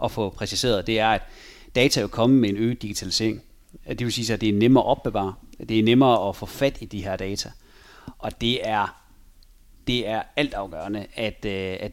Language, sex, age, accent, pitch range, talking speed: Danish, male, 30-49, native, 105-140 Hz, 210 wpm